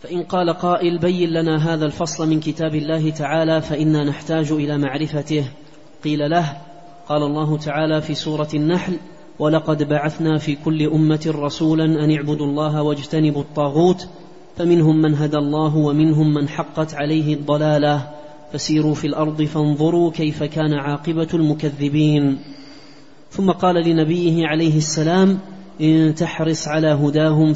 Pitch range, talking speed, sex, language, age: 150-160 Hz, 130 wpm, male, Arabic, 30-49